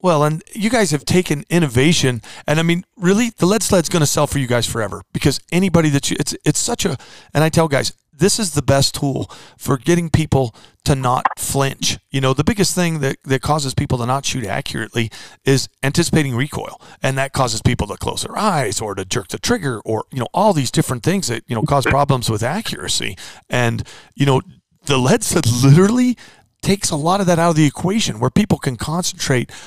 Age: 40-59